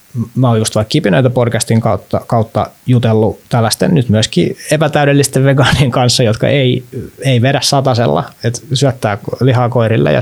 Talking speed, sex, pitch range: 145 wpm, male, 115-140 Hz